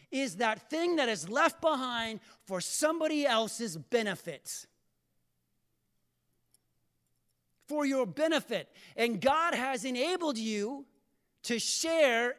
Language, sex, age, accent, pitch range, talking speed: English, male, 40-59, American, 210-320 Hz, 100 wpm